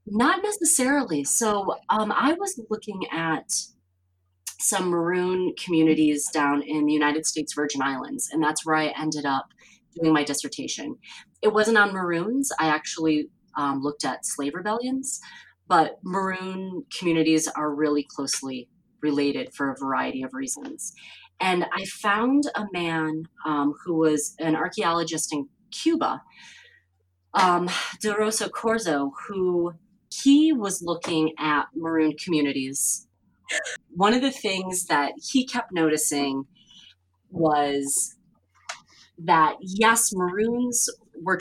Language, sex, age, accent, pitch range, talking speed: English, female, 30-49, American, 150-205 Hz, 125 wpm